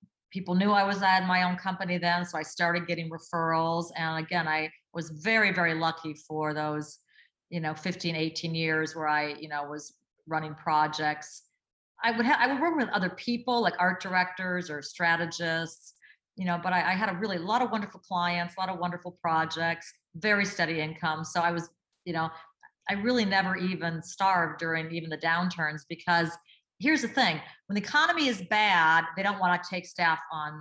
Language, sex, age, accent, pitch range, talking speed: English, female, 40-59, American, 160-195 Hz, 195 wpm